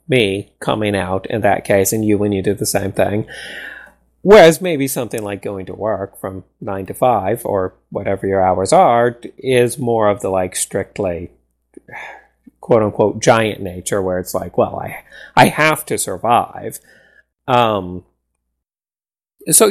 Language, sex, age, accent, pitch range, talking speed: English, male, 30-49, American, 100-125 Hz, 150 wpm